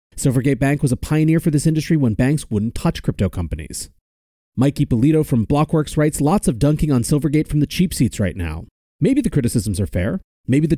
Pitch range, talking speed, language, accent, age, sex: 115-155 Hz, 205 wpm, English, American, 30-49, male